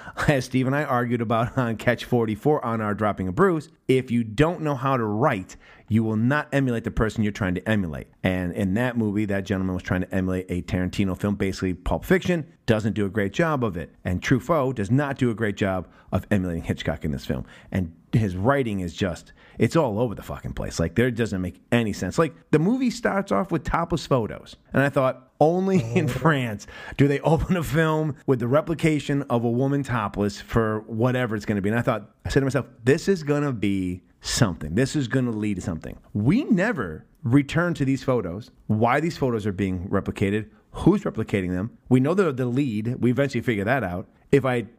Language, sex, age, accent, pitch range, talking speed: English, male, 40-59, American, 105-145 Hz, 220 wpm